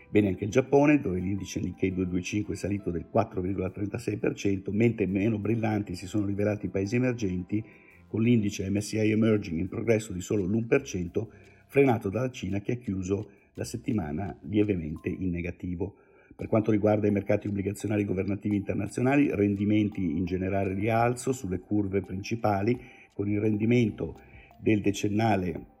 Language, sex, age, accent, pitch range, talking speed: Italian, male, 50-69, native, 95-110 Hz, 140 wpm